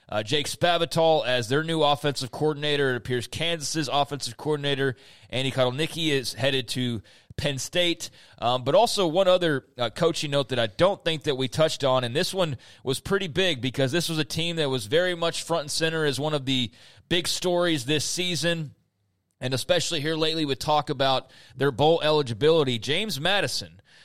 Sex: male